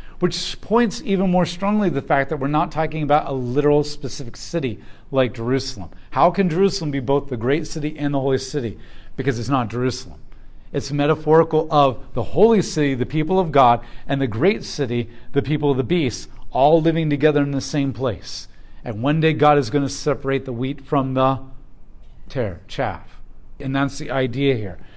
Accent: American